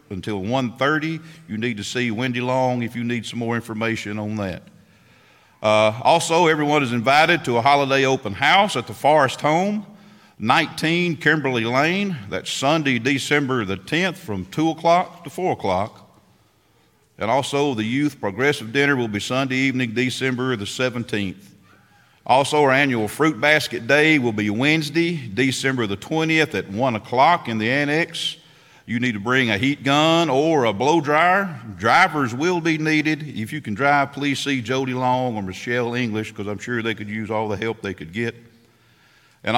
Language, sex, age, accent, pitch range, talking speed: English, male, 50-69, American, 115-150 Hz, 175 wpm